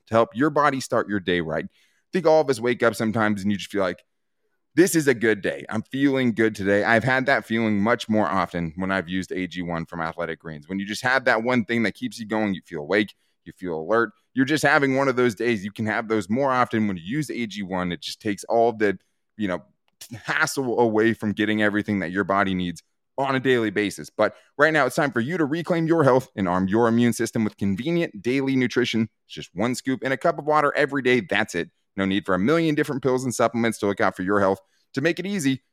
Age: 20-39